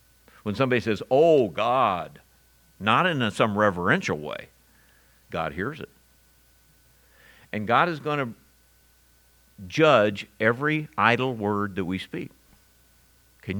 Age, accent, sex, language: 60-79, American, male, English